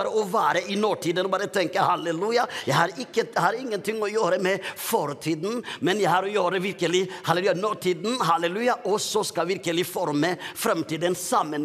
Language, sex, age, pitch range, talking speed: English, male, 50-69, 160-200 Hz, 170 wpm